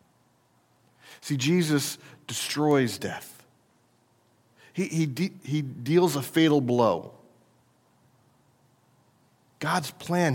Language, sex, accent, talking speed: English, male, American, 80 wpm